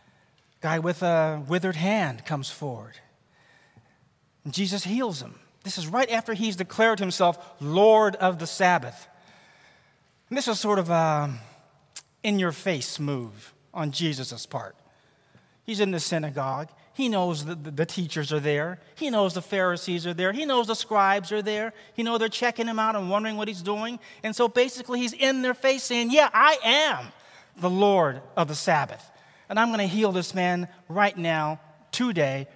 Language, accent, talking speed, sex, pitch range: English, American, 175 wpm, male, 155-220 Hz